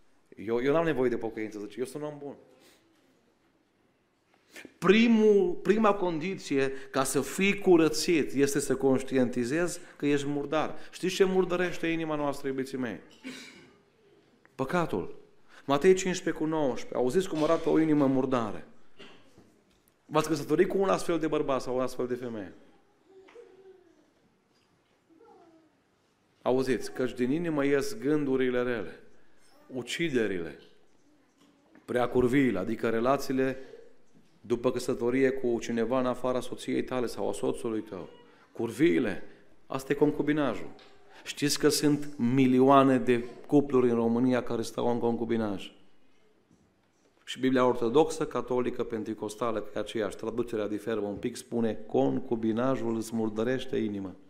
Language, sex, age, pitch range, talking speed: Romanian, male, 40-59, 120-160 Hz, 120 wpm